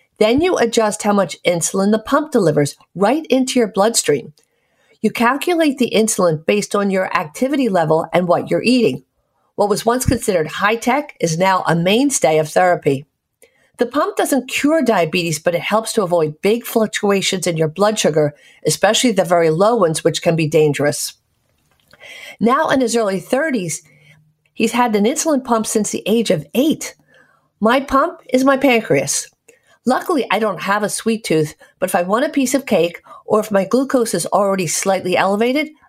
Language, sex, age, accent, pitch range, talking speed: English, female, 50-69, American, 175-245 Hz, 175 wpm